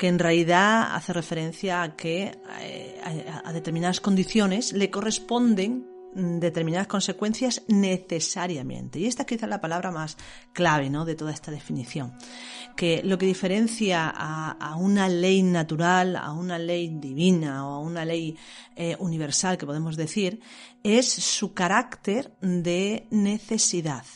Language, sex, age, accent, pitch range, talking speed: Spanish, female, 40-59, Spanish, 165-210 Hz, 140 wpm